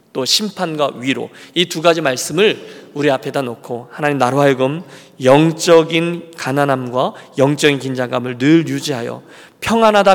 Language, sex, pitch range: Korean, male, 130-165 Hz